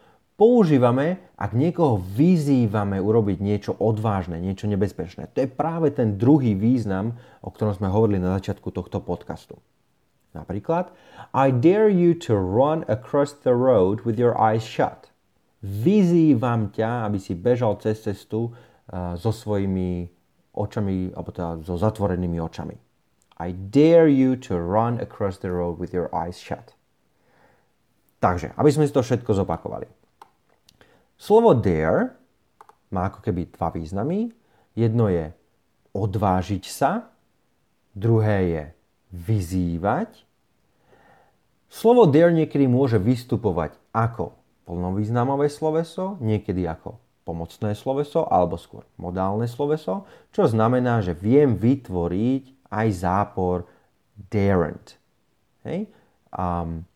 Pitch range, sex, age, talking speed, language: 95-130 Hz, male, 30-49, 115 wpm, Slovak